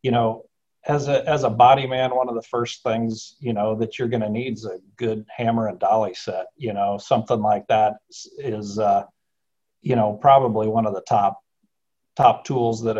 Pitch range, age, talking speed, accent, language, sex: 115-130 Hz, 50-69, 205 wpm, American, English, male